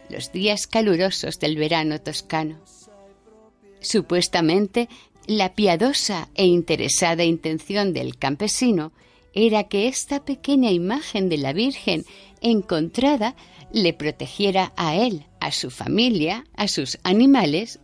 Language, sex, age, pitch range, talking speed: Spanish, female, 50-69, 155-220 Hz, 110 wpm